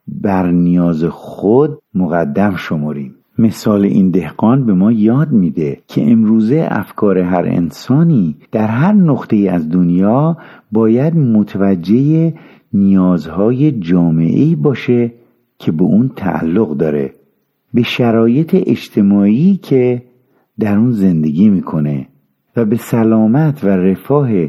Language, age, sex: Persian, 50-69, male